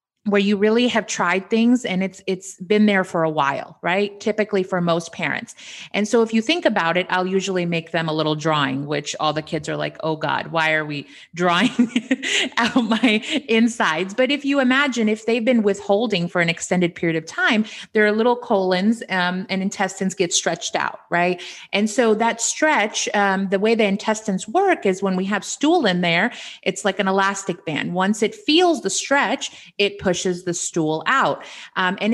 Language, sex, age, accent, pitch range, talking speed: English, female, 30-49, American, 180-225 Hz, 200 wpm